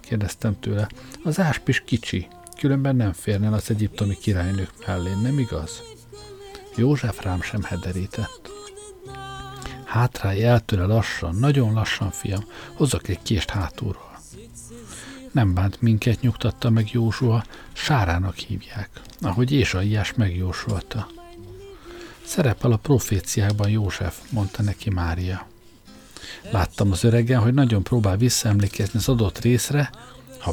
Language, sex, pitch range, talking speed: Hungarian, male, 95-130 Hz, 110 wpm